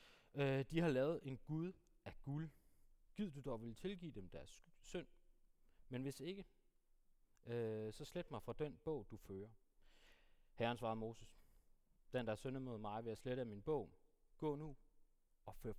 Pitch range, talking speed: 115-170 Hz, 180 wpm